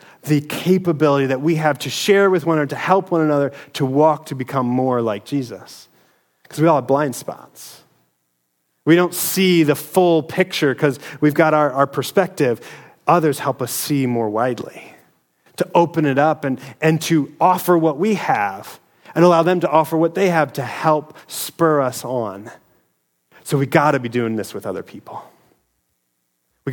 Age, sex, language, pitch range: 30-49, male, English, 120-160 Hz